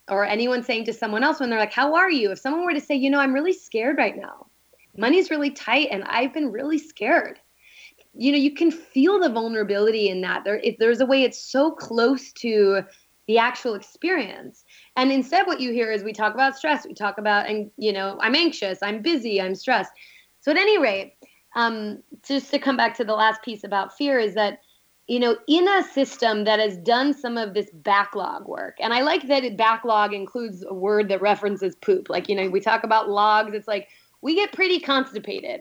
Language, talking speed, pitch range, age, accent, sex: English, 215 wpm, 205-280 Hz, 20-39, American, female